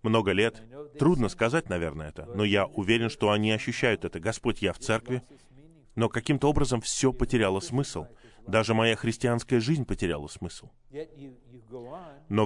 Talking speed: 145 wpm